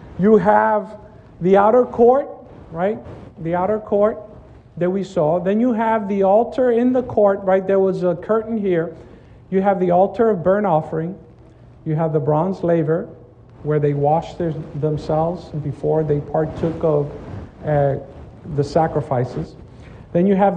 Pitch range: 150-200 Hz